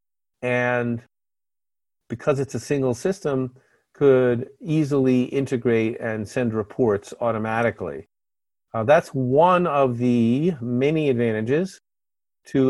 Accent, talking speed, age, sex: American, 100 wpm, 50-69, male